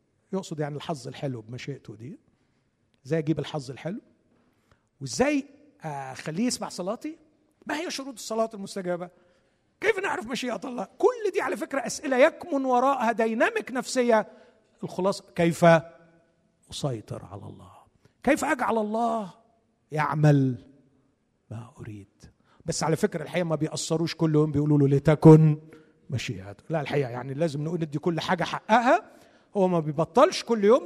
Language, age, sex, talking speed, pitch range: Arabic, 50-69, male, 130 wpm, 140-225 Hz